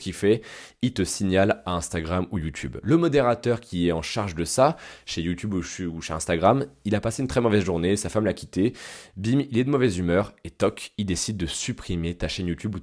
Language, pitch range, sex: French, 90-115 Hz, male